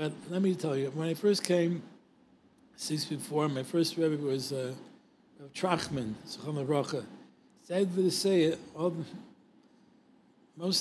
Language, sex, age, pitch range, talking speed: English, male, 60-79, 150-185 Hz, 135 wpm